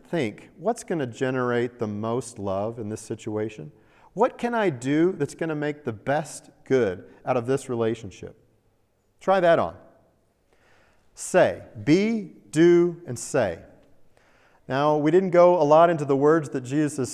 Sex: male